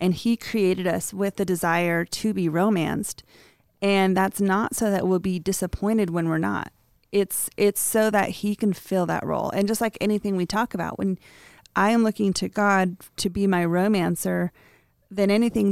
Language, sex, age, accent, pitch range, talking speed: English, female, 30-49, American, 185-210 Hz, 185 wpm